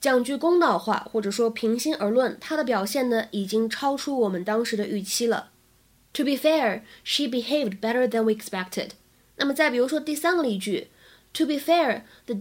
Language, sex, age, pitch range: Chinese, female, 20-39, 220-305 Hz